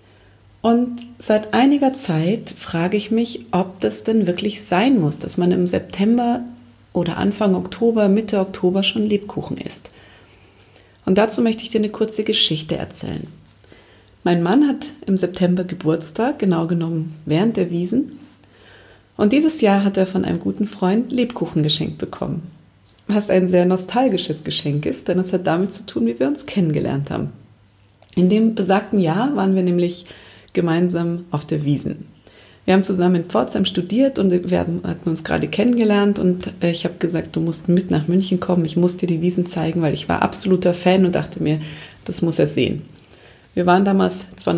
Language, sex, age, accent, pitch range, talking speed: German, female, 40-59, German, 160-210 Hz, 175 wpm